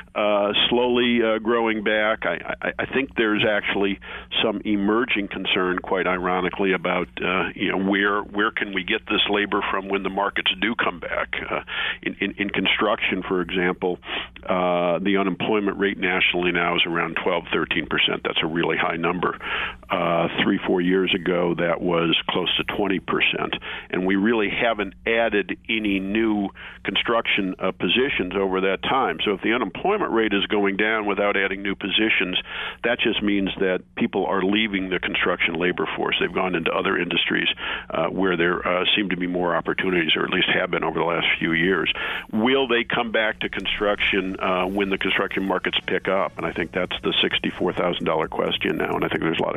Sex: male